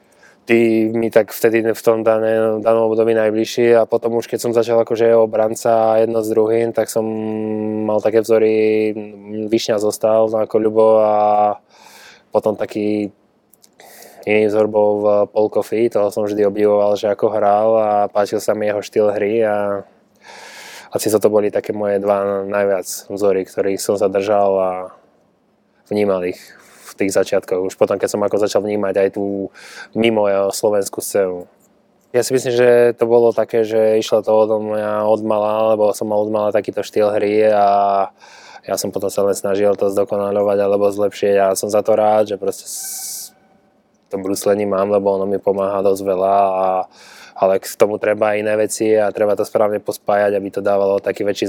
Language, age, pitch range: Czech, 20-39, 100-110 Hz